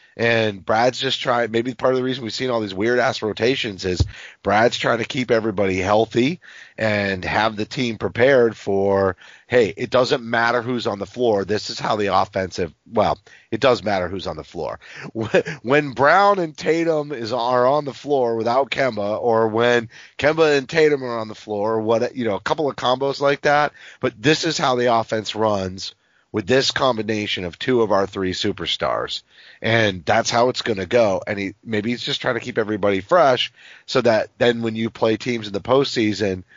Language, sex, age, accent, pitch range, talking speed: English, male, 30-49, American, 105-125 Hz, 200 wpm